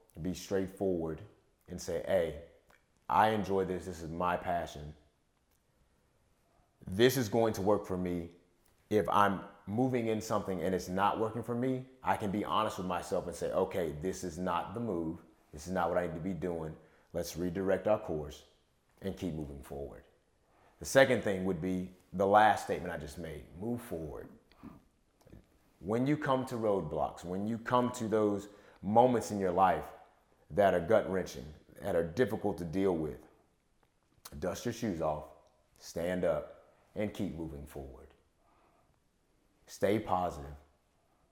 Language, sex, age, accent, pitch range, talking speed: English, male, 30-49, American, 80-105 Hz, 160 wpm